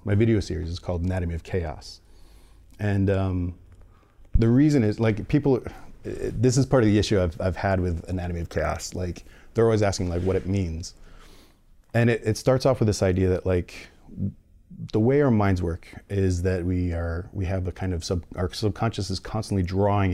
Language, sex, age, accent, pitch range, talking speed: English, male, 40-59, American, 90-105 Hz, 195 wpm